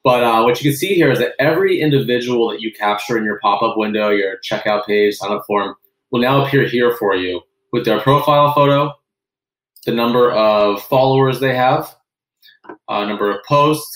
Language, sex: English, male